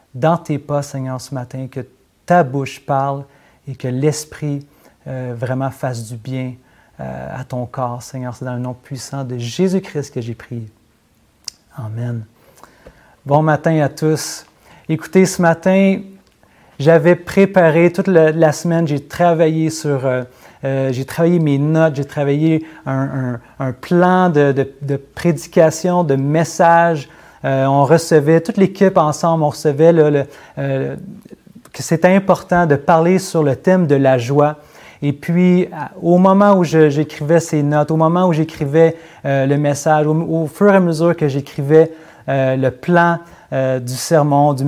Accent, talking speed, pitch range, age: Canadian, 160 wpm, 135-170 Hz, 30-49